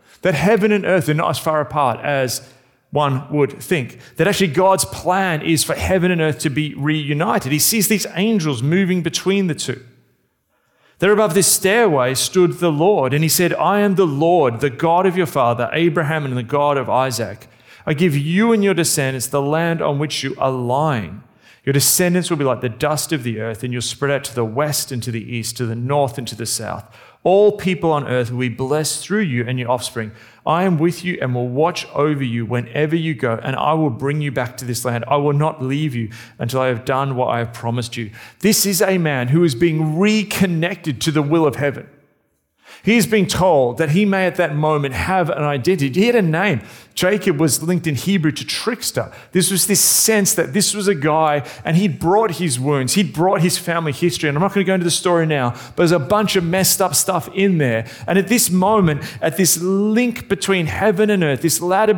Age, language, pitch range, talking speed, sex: 40-59, English, 130-185 Hz, 230 wpm, male